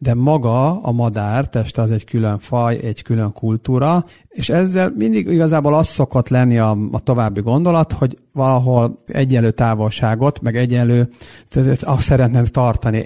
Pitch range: 110-135 Hz